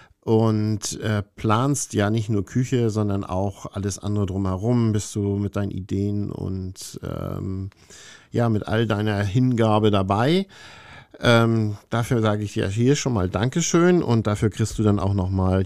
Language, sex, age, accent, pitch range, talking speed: German, male, 50-69, German, 100-120 Hz, 155 wpm